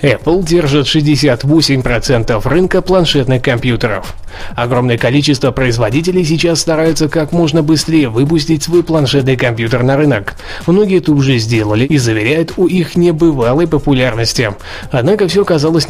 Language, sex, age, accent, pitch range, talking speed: Russian, male, 20-39, native, 125-160 Hz, 125 wpm